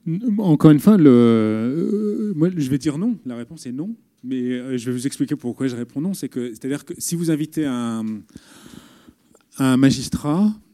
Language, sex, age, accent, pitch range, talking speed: French, male, 30-49, French, 120-155 Hz, 195 wpm